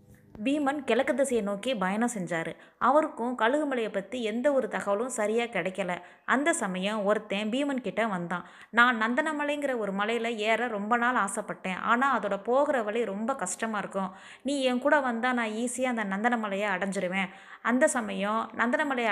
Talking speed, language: 145 wpm, Tamil